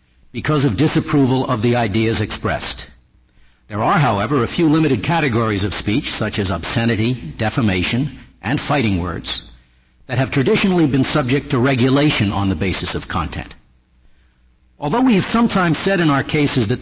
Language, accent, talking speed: English, American, 155 wpm